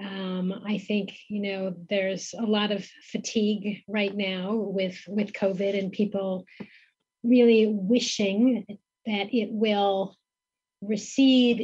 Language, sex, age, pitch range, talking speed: English, female, 30-49, 195-230 Hz, 120 wpm